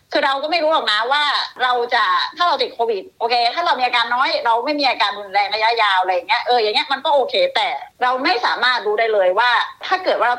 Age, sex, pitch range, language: 30-49, female, 195-300 Hz, Thai